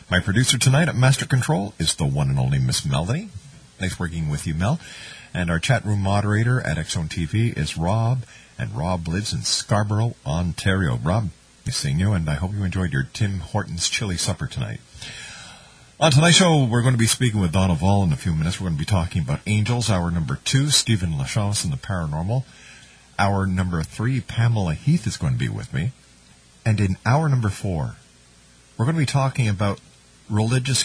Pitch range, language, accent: 80-120 Hz, English, American